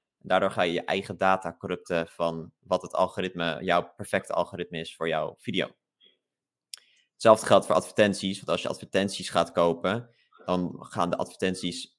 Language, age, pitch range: Dutch, 20-39, 85-110 Hz